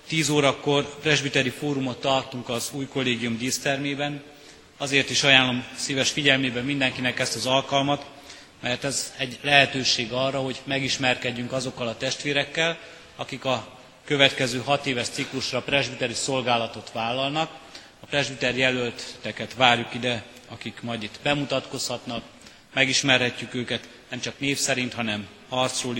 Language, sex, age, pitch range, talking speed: Hungarian, male, 30-49, 120-135 Hz, 125 wpm